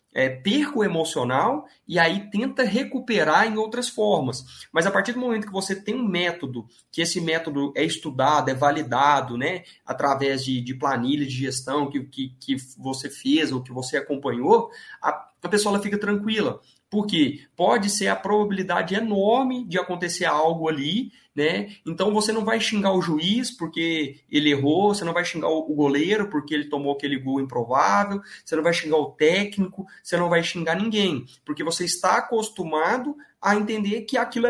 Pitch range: 145-210 Hz